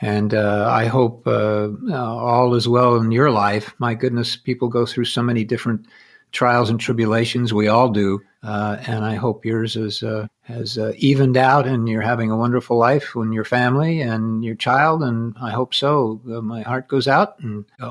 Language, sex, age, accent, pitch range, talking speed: English, male, 50-69, American, 110-130 Hz, 200 wpm